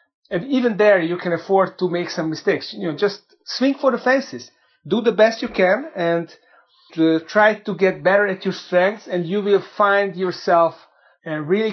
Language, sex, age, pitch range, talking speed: English, male, 30-49, 160-200 Hz, 190 wpm